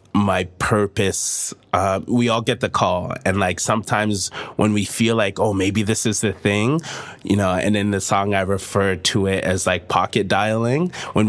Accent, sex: American, male